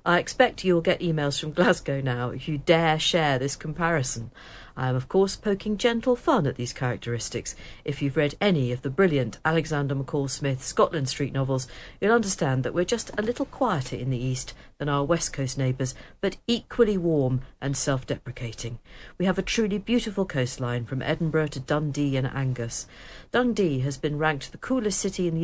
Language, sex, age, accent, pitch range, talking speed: English, female, 50-69, British, 130-180 Hz, 185 wpm